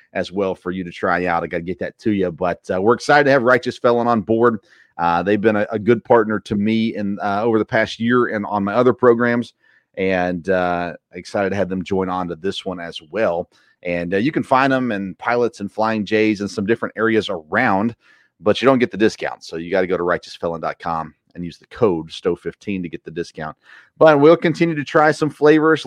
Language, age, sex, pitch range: English, 30-49, male, 95-125 Hz